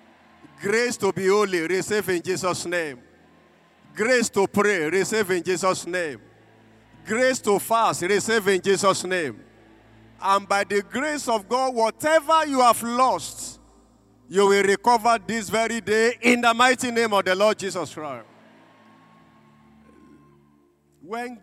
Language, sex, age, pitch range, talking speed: English, male, 50-69, 140-220 Hz, 135 wpm